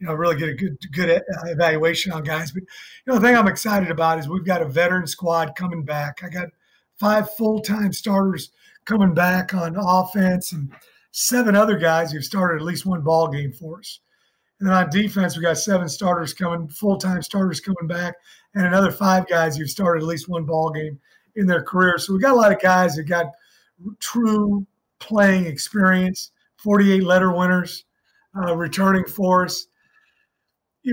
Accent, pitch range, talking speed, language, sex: American, 170-200 Hz, 185 wpm, English, male